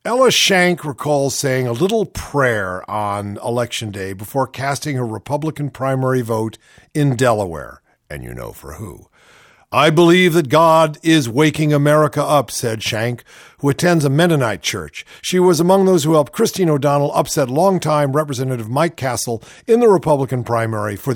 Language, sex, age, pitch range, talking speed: English, male, 50-69, 115-165 Hz, 160 wpm